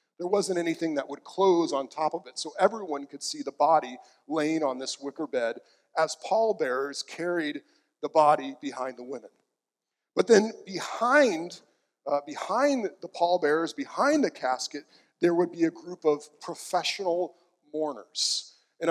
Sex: male